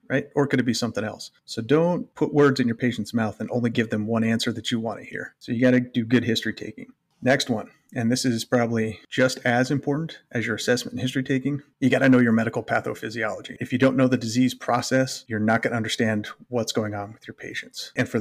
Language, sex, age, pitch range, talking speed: English, male, 30-49, 115-130 Hz, 250 wpm